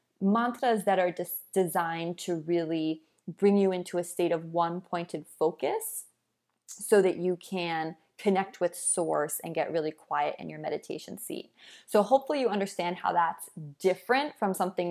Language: English